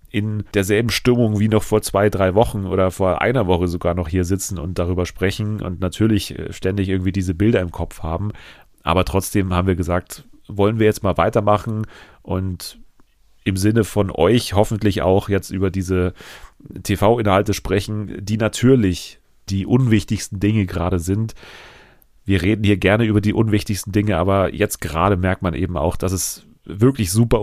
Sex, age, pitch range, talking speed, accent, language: male, 30-49, 90-105 Hz, 170 wpm, German, German